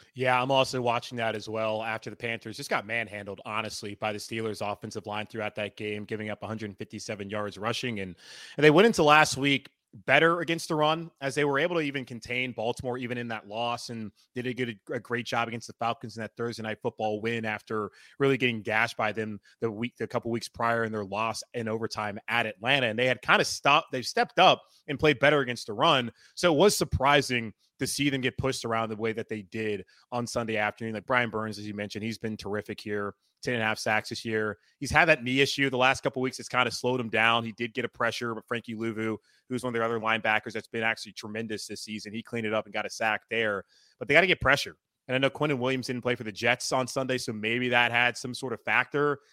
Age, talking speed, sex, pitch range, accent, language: 20-39, 250 wpm, male, 110-130 Hz, American, English